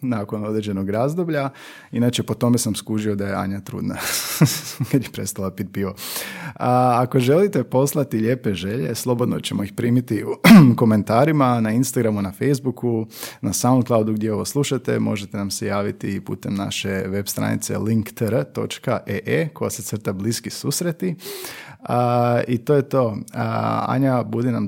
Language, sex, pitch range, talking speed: Croatian, male, 105-125 Hz, 150 wpm